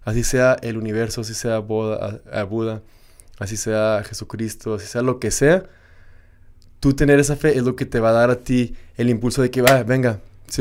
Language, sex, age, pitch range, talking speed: English, male, 20-39, 110-130 Hz, 215 wpm